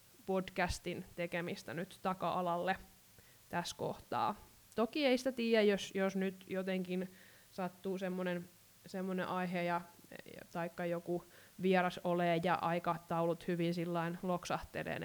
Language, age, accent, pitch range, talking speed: Finnish, 20-39, native, 170-190 Hz, 110 wpm